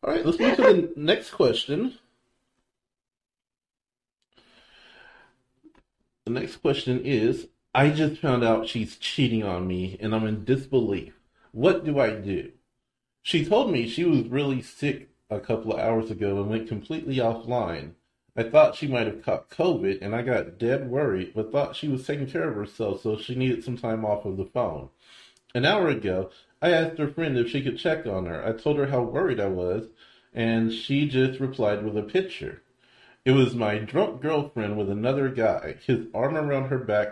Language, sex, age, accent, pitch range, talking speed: English, male, 30-49, American, 110-145 Hz, 180 wpm